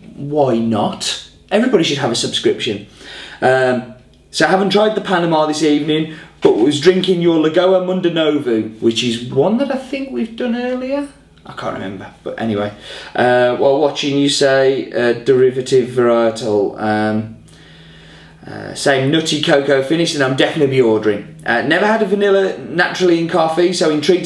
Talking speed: 160 wpm